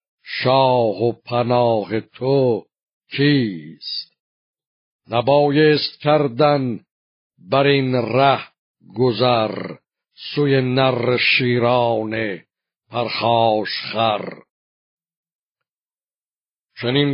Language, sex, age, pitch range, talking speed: Persian, male, 50-69, 120-145 Hz, 60 wpm